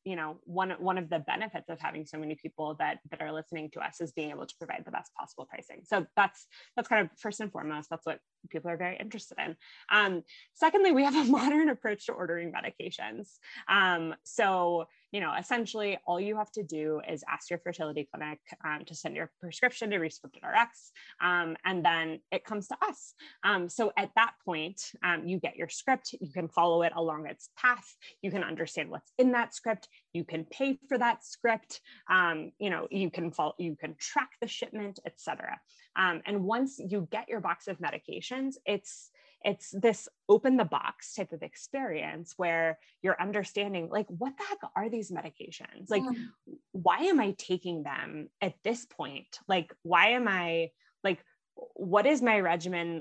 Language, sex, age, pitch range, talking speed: English, female, 20-39, 165-225 Hz, 190 wpm